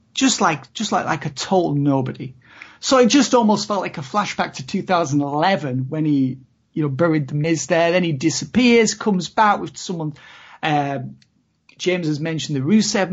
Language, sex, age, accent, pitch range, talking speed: English, male, 40-59, British, 155-200 Hz, 180 wpm